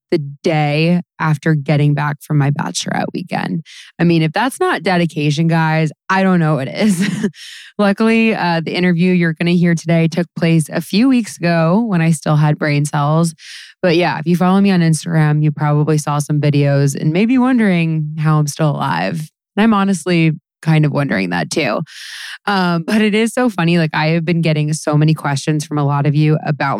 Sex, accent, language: female, American, English